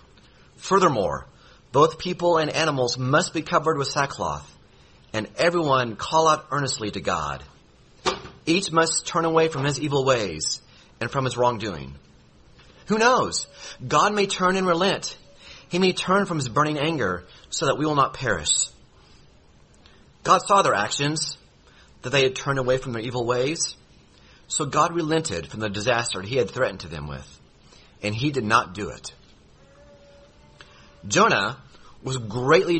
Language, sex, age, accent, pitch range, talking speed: English, male, 30-49, American, 120-160 Hz, 150 wpm